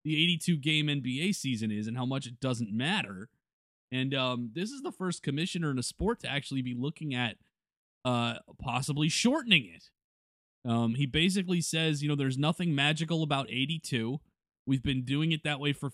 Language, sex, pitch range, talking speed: English, male, 110-145 Hz, 185 wpm